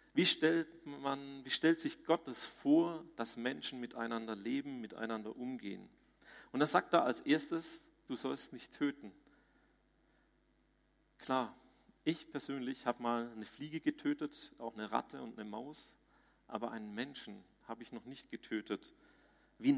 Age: 40-59